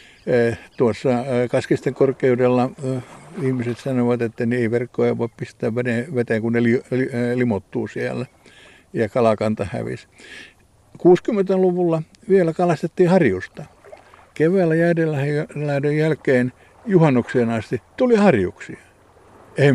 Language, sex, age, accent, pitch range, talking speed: Finnish, male, 60-79, native, 115-135 Hz, 95 wpm